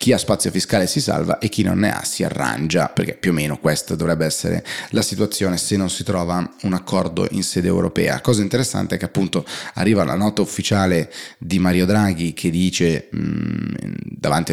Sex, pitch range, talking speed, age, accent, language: male, 90-105 Hz, 190 wpm, 30-49, native, Italian